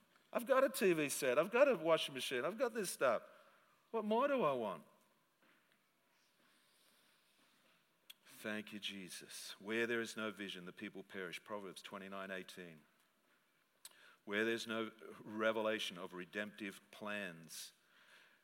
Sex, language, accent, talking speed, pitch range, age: male, English, Australian, 125 wpm, 110-150 Hz, 50-69